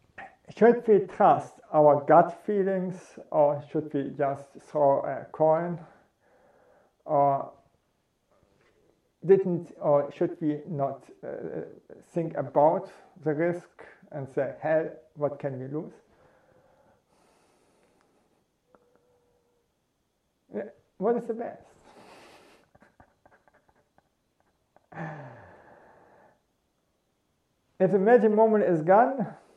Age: 50-69